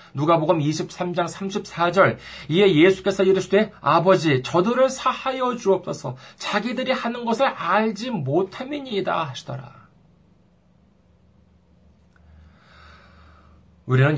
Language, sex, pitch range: Korean, male, 140-220 Hz